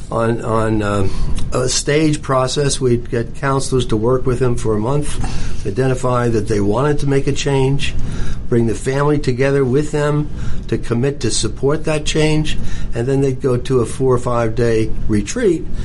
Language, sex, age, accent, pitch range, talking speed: English, male, 60-79, American, 115-140 Hz, 175 wpm